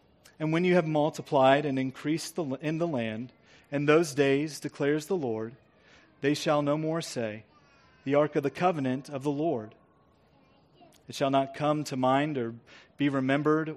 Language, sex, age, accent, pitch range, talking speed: English, male, 30-49, American, 140-175 Hz, 165 wpm